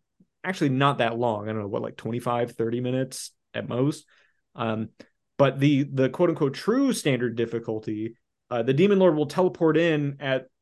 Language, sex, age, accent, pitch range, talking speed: English, male, 30-49, American, 120-155 Hz, 175 wpm